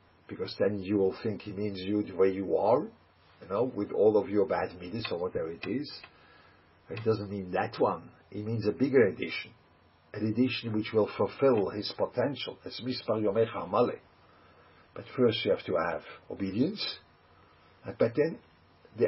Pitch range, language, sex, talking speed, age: 90-125 Hz, English, male, 170 wpm, 50-69